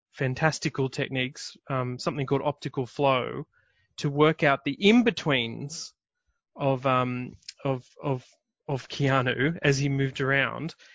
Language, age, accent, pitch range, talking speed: English, 30-49, Australian, 135-165 Hz, 120 wpm